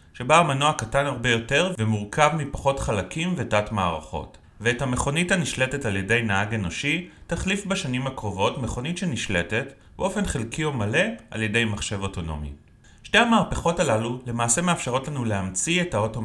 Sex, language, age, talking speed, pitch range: male, Hebrew, 30-49, 145 wpm, 100-145 Hz